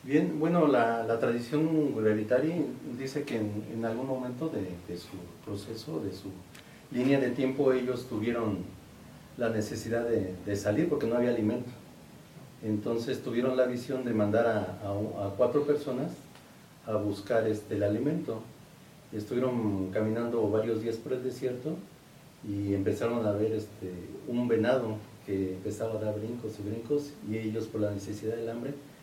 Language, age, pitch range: Spanish, 40-59, 105-125 Hz